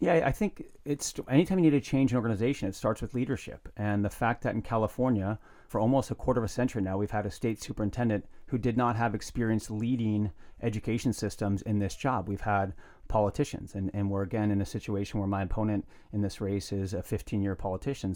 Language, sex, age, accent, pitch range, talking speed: English, male, 30-49, American, 100-120 Hz, 220 wpm